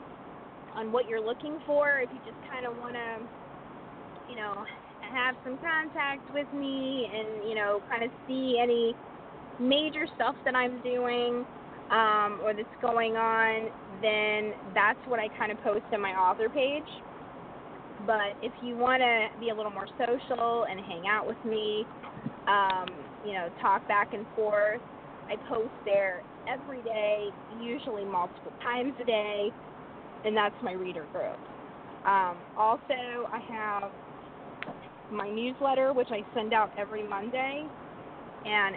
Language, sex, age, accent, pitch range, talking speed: English, female, 20-39, American, 205-245 Hz, 150 wpm